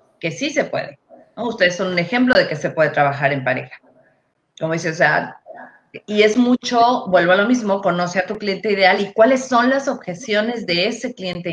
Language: Spanish